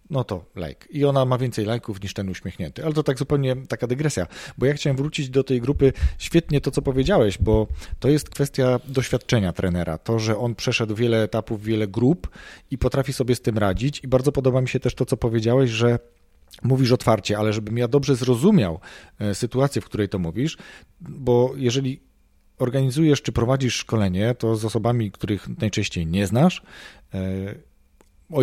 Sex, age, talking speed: male, 40-59, 175 wpm